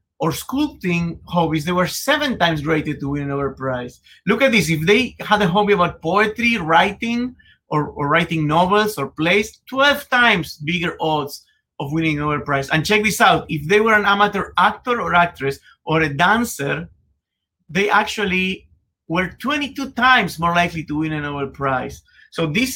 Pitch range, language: 160-215 Hz, English